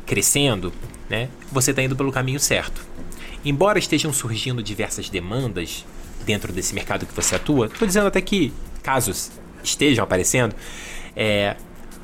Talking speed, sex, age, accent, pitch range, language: 135 wpm, male, 20-39, Brazilian, 105-150 Hz, Portuguese